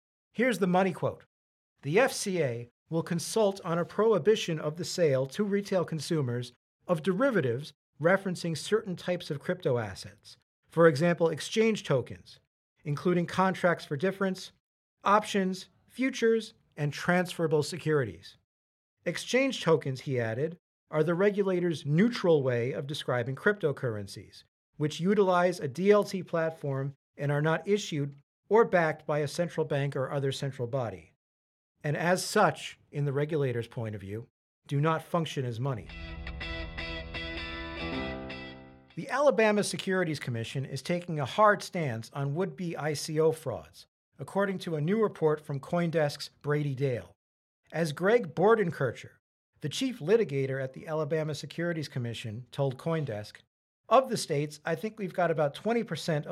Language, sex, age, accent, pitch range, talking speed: English, male, 40-59, American, 125-180 Hz, 135 wpm